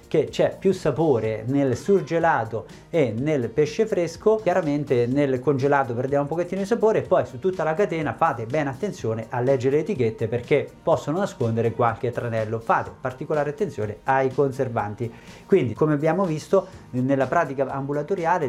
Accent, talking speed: native, 155 wpm